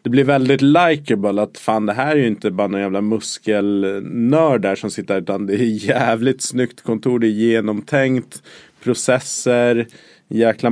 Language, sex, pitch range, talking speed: Swedish, male, 105-130 Hz, 160 wpm